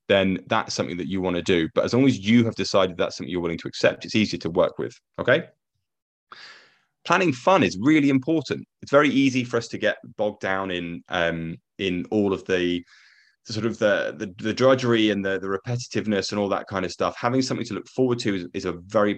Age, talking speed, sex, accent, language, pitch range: 20-39, 225 wpm, male, British, English, 95-115 Hz